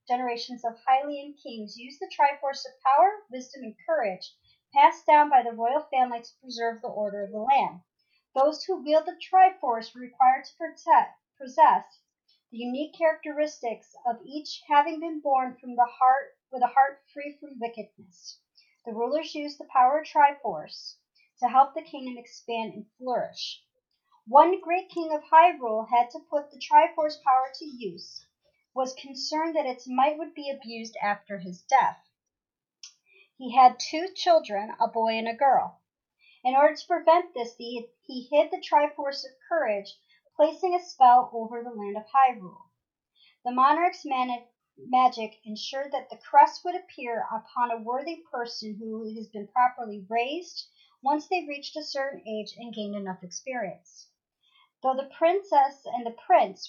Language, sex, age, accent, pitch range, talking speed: English, male, 40-59, American, 235-310 Hz, 160 wpm